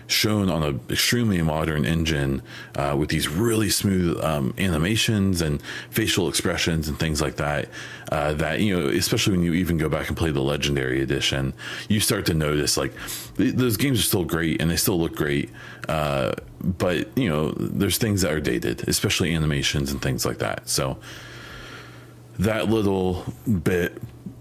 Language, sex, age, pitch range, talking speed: English, male, 30-49, 75-100 Hz, 170 wpm